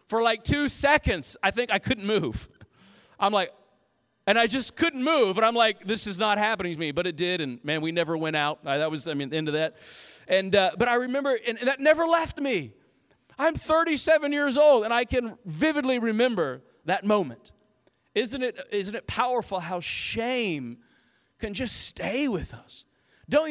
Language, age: English, 40-59